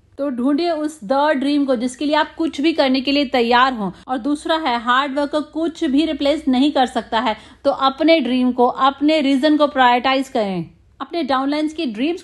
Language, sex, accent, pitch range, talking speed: Hindi, female, native, 255-320 Hz, 200 wpm